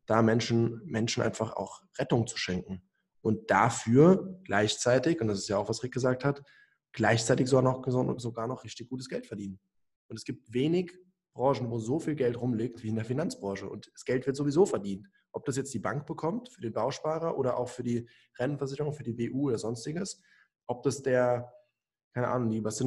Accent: German